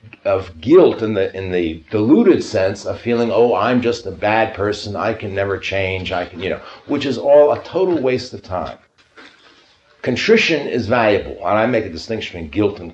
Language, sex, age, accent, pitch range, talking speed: English, male, 60-79, American, 95-130 Hz, 200 wpm